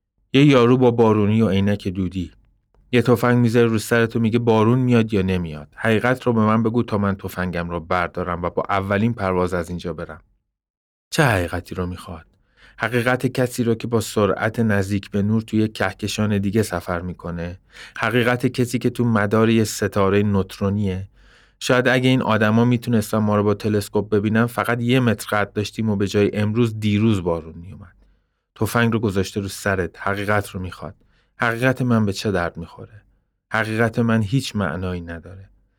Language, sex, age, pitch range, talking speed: Persian, male, 30-49, 95-120 Hz, 170 wpm